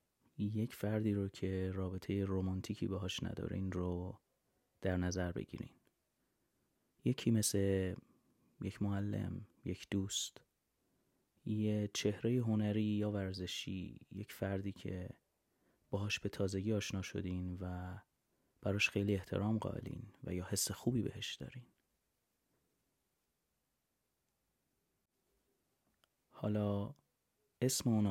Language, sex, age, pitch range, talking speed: Persian, male, 30-49, 95-105 Hz, 95 wpm